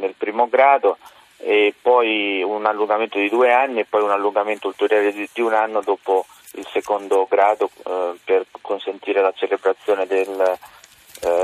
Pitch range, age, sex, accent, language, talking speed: 100-140 Hz, 30-49, male, native, Italian, 150 wpm